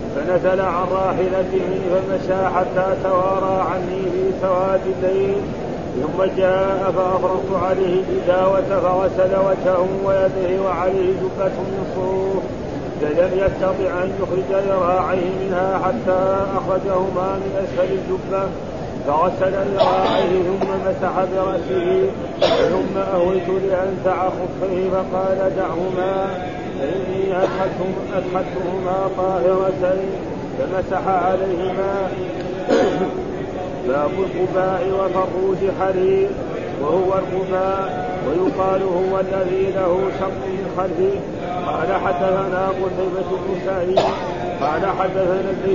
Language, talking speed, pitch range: Arabic, 85 wpm, 185-190 Hz